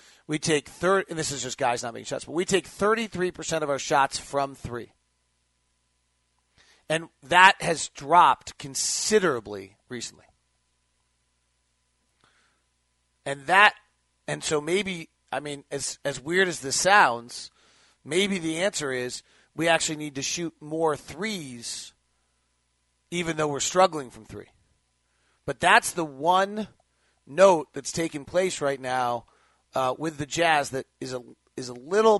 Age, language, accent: 40-59, English, American